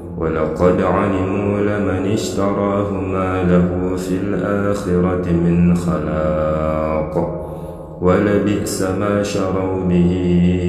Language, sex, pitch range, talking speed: Indonesian, male, 85-100 Hz, 80 wpm